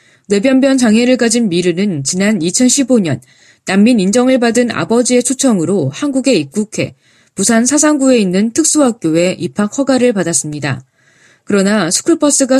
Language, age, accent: Korean, 20-39, native